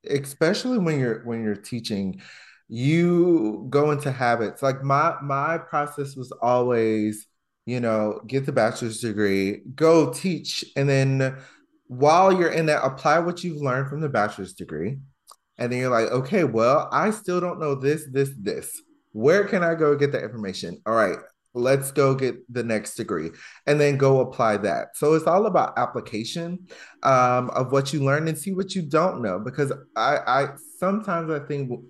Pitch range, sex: 125-165 Hz, male